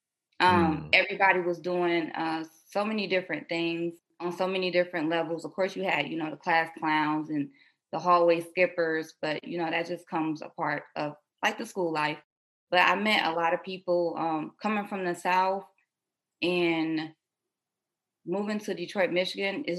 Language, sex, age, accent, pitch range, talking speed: English, female, 20-39, American, 160-185 Hz, 175 wpm